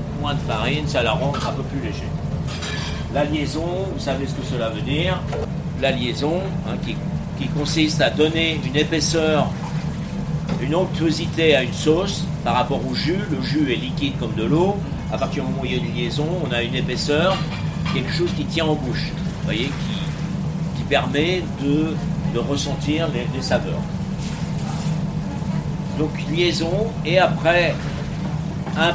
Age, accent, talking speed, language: 60-79, French, 170 wpm, French